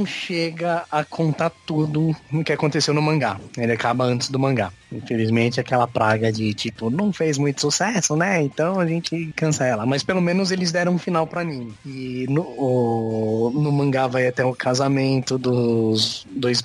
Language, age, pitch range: Portuguese, 20-39, 125-160 Hz